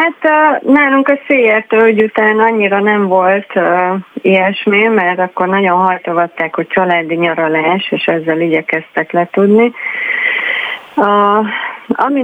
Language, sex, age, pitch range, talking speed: Hungarian, female, 30-49, 175-210 Hz, 125 wpm